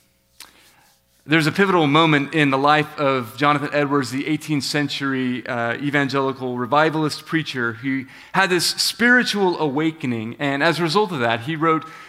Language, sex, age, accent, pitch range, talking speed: English, male, 30-49, American, 130-180 Hz, 150 wpm